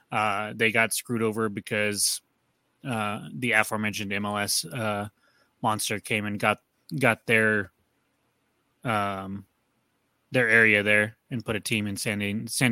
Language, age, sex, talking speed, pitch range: English, 20-39, male, 135 wpm, 110-130 Hz